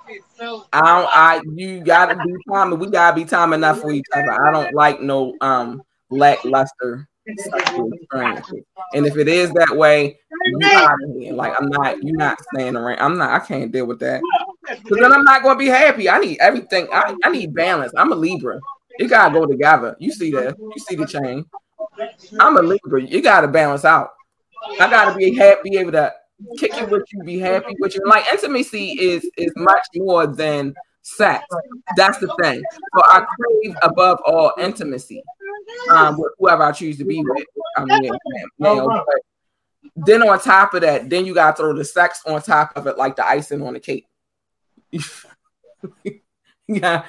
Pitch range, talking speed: 150-235 Hz, 185 wpm